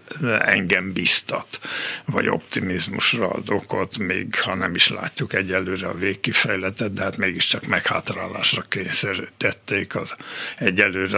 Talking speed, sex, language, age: 115 wpm, male, Hungarian, 60-79